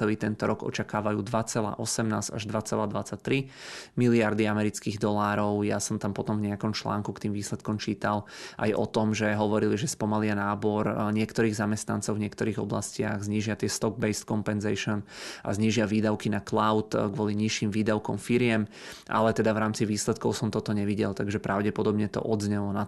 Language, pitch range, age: Czech, 105-110 Hz, 20-39